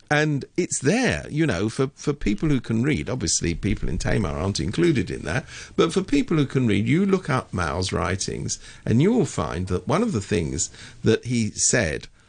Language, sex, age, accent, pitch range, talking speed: English, male, 50-69, British, 100-140 Hz, 205 wpm